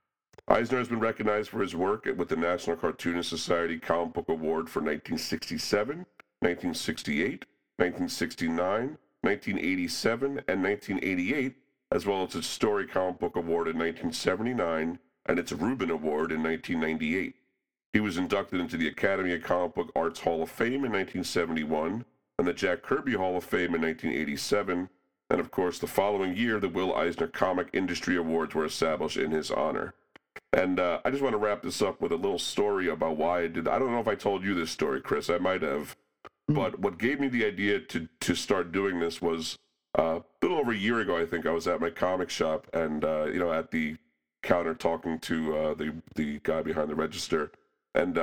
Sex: male